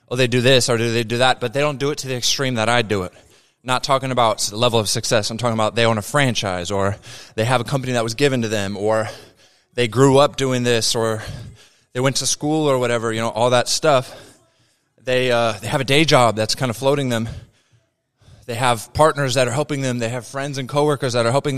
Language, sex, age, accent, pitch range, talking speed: English, male, 20-39, American, 115-135 Hz, 255 wpm